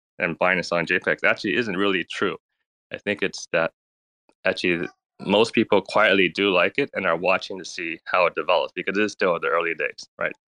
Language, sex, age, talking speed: English, male, 20-39, 205 wpm